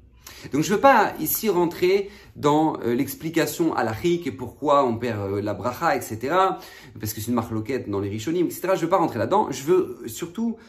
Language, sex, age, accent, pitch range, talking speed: French, male, 40-59, French, 115-185 Hz, 210 wpm